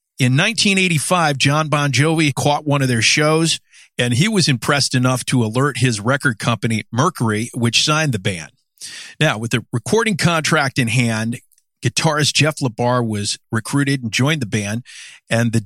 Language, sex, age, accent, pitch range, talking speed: English, male, 50-69, American, 120-155 Hz, 165 wpm